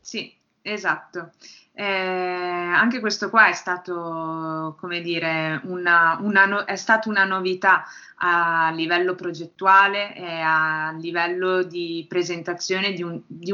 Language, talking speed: Italian, 125 wpm